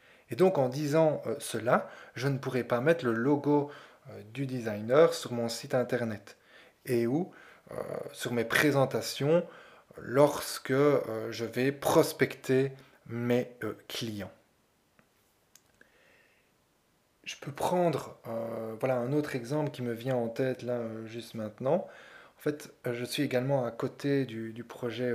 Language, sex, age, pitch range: French, male, 20-39, 115-145 Hz